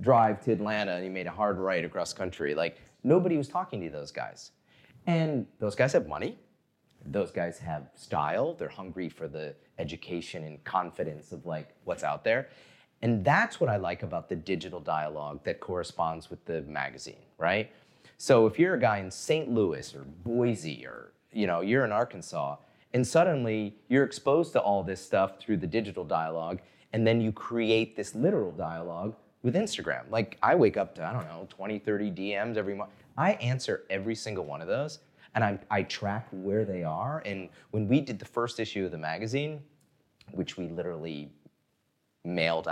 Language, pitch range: English, 95-140 Hz